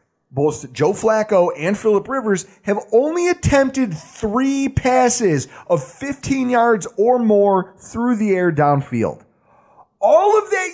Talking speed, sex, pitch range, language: 130 wpm, male, 155-225 Hz, English